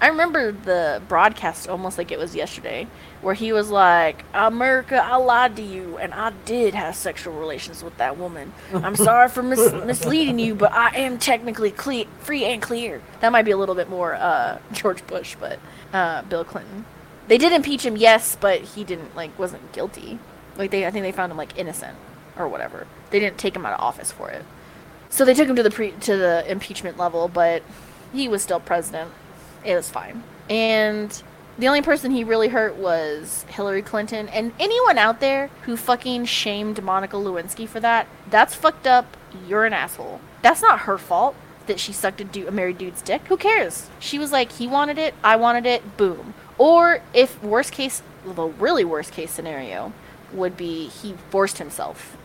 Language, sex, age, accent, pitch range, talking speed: English, female, 20-39, American, 185-250 Hz, 195 wpm